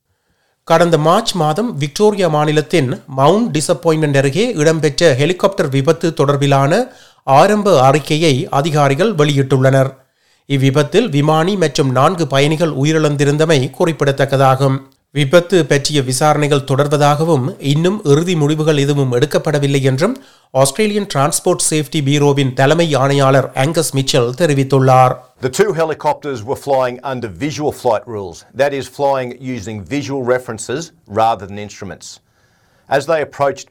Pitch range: 125-155 Hz